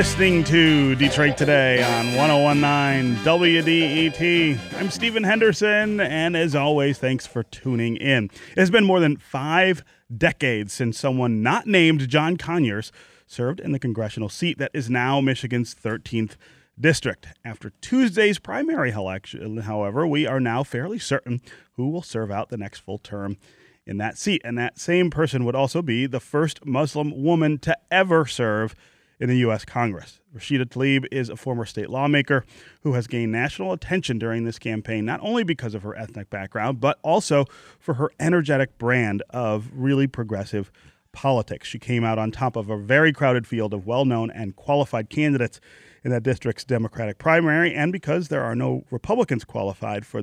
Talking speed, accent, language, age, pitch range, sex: 165 wpm, American, English, 30-49, 110-150 Hz, male